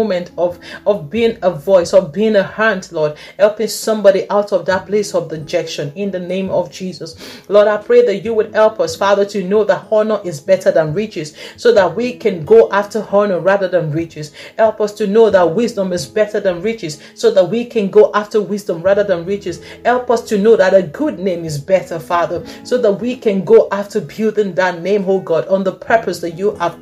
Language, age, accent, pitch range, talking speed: English, 40-59, Nigerian, 180-220 Hz, 220 wpm